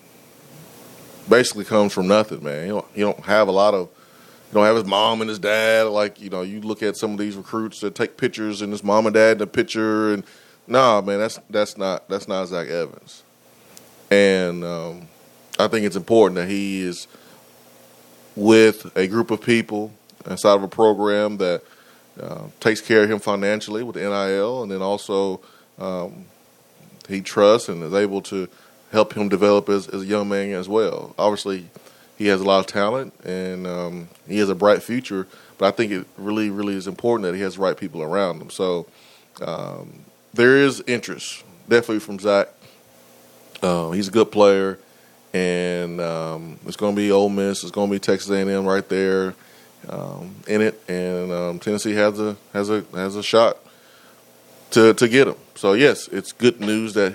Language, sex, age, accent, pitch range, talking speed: English, male, 20-39, American, 90-105 Hz, 195 wpm